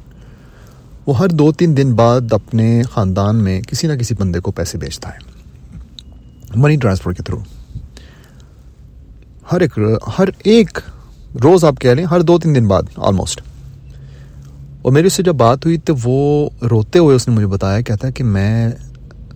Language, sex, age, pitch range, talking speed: Urdu, male, 30-49, 95-125 Hz, 165 wpm